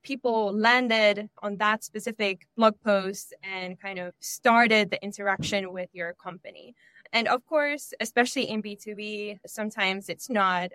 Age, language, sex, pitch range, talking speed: 10-29, English, female, 195-235 Hz, 140 wpm